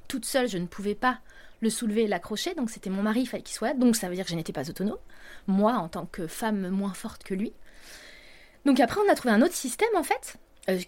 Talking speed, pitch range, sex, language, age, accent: 260 wpm, 200-260 Hz, female, French, 20-39, French